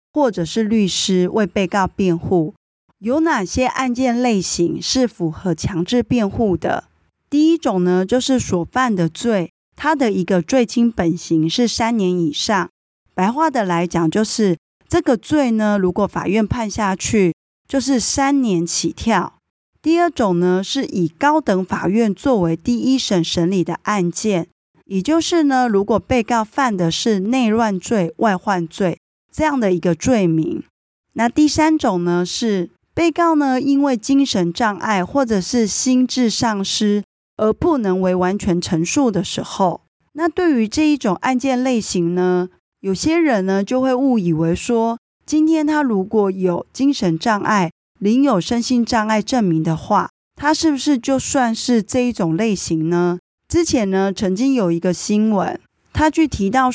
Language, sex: Chinese, female